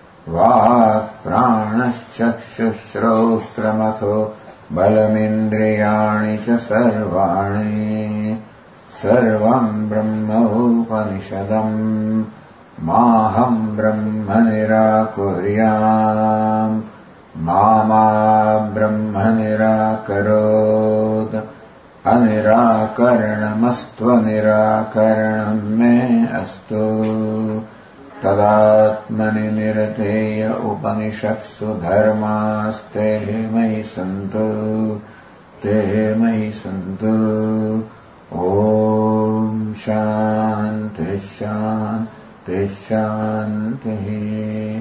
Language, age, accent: English, 60-79, Indian